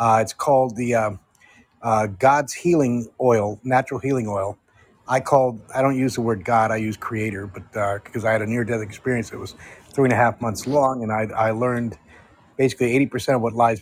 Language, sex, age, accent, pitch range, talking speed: English, male, 30-49, American, 110-140 Hz, 210 wpm